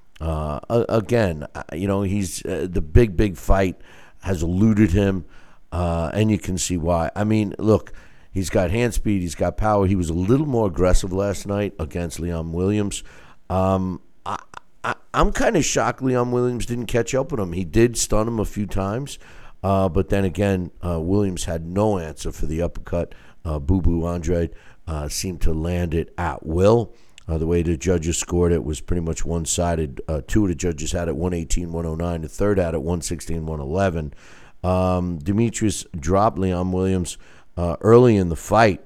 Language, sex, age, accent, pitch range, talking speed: English, male, 50-69, American, 85-100 Hz, 175 wpm